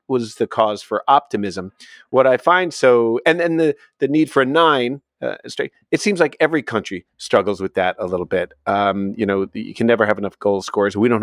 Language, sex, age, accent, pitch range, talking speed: English, male, 40-59, American, 110-145 Hz, 225 wpm